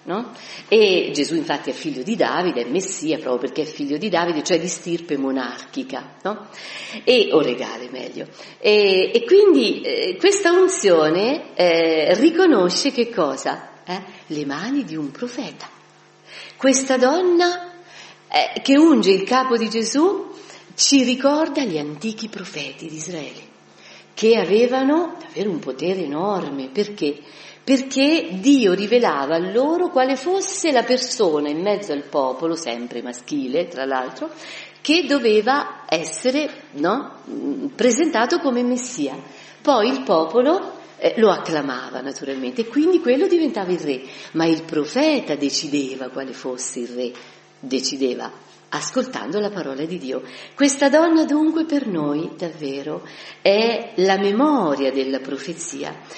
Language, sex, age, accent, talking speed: Italian, female, 50-69, native, 130 wpm